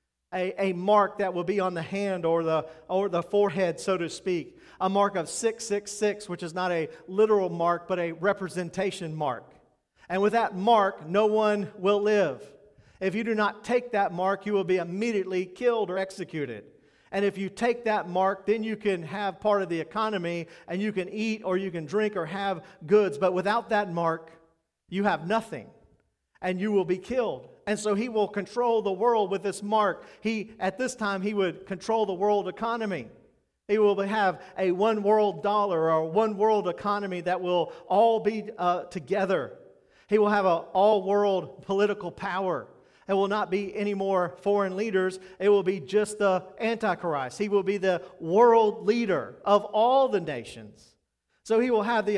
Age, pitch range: 40-59, 180-210 Hz